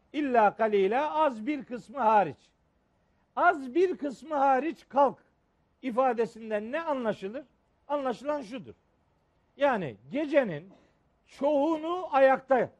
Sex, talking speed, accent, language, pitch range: male, 100 wpm, native, Turkish, 220-290 Hz